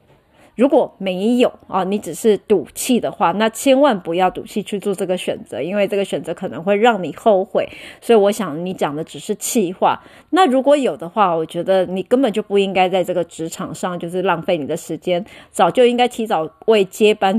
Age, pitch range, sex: 30-49, 180-230 Hz, female